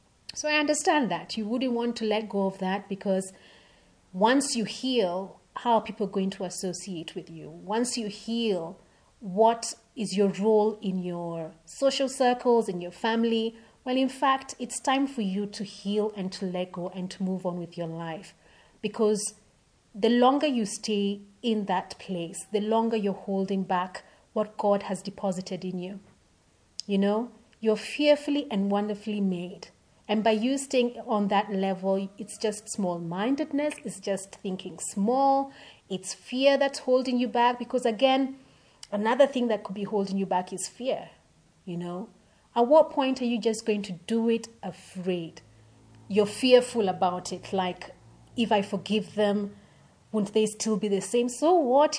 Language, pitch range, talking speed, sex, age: English, 190-235 Hz, 170 wpm, female, 30-49